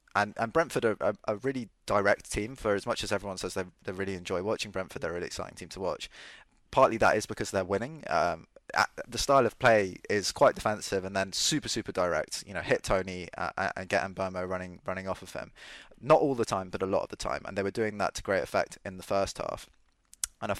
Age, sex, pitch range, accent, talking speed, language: 20-39, male, 95-110 Hz, British, 245 wpm, English